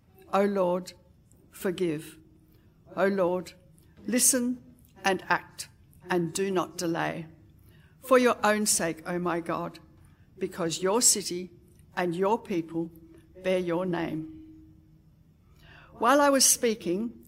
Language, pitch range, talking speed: English, 165-205 Hz, 110 wpm